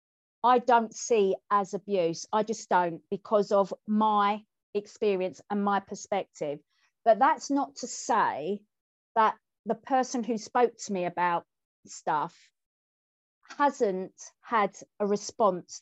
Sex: female